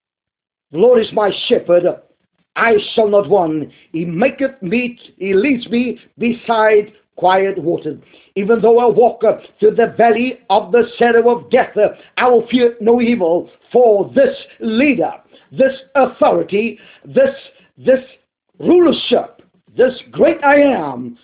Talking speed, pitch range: 135 wpm, 185-245 Hz